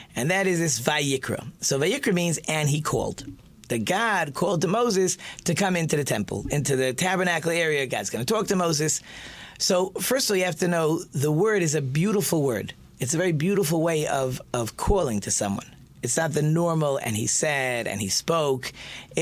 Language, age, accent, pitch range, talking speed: English, 40-59, American, 125-180 Hz, 205 wpm